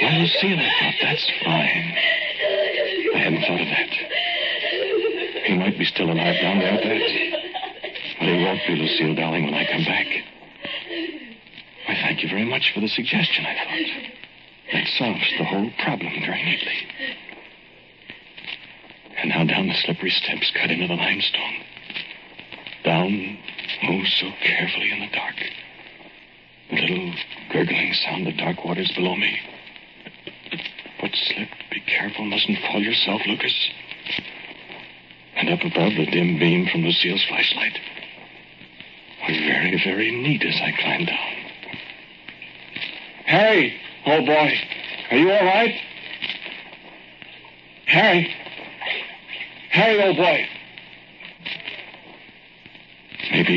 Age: 60-79